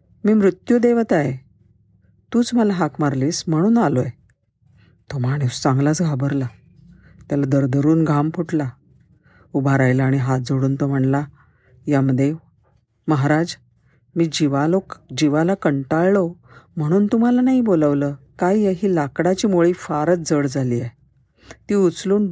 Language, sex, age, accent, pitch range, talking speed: Marathi, female, 50-69, native, 130-170 Hz, 120 wpm